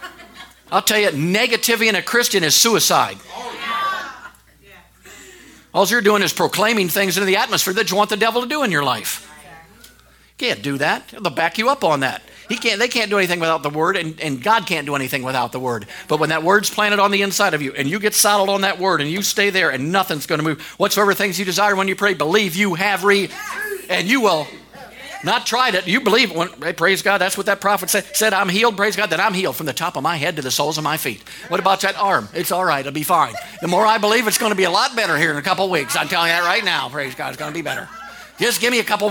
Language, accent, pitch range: English, American, 165-210 Hz